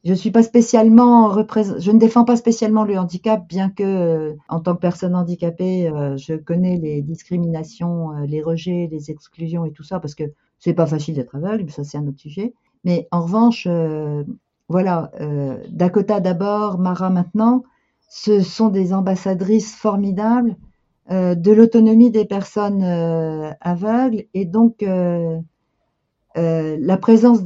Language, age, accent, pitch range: French, 50-69, French, 175-225 Hz